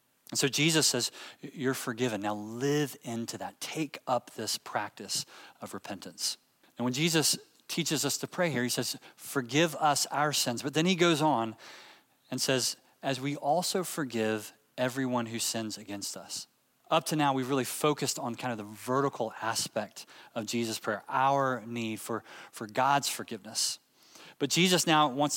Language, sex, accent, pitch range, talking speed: English, male, American, 120-155 Hz, 170 wpm